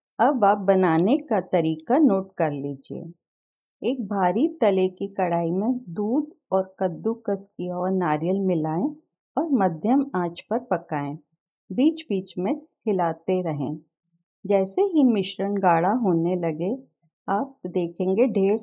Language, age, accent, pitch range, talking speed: Hindi, 50-69, native, 170-230 Hz, 130 wpm